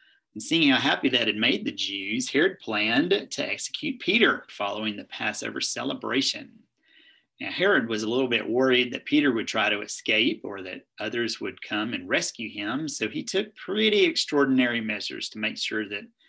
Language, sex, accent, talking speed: English, male, American, 180 wpm